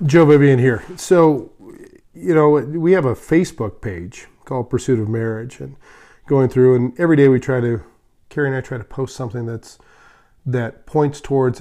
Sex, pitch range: male, 115-145 Hz